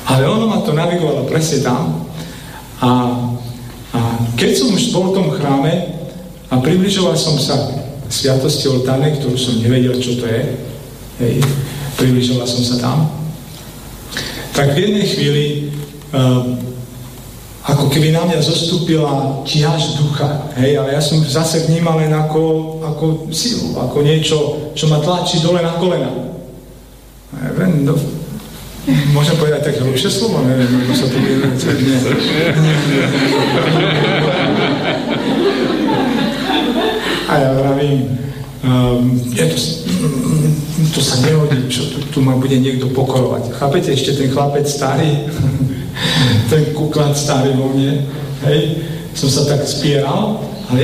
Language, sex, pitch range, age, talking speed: Slovak, male, 130-155 Hz, 40-59, 125 wpm